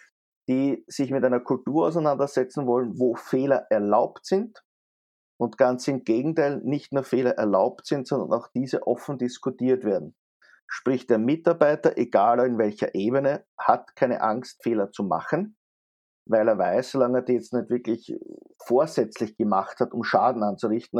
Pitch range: 115-135 Hz